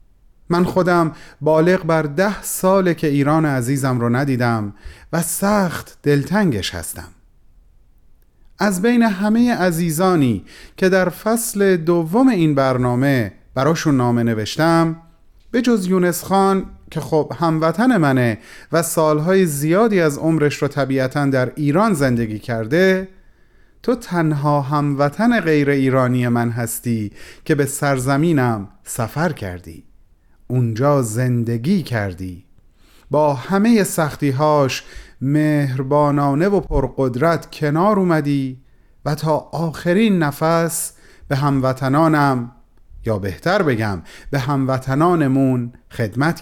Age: 30-49